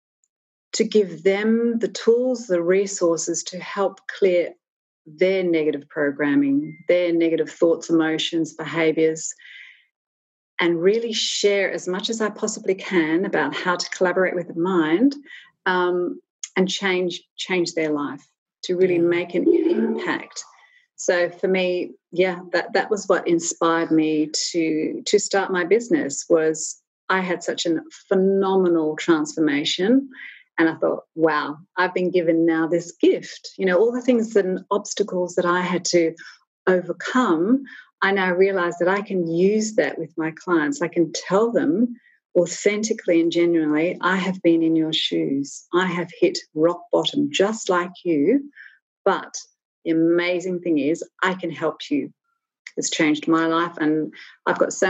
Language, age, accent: English, 40-59, Australian